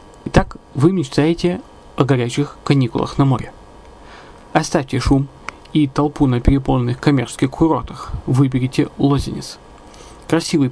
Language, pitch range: Russian, 130-165 Hz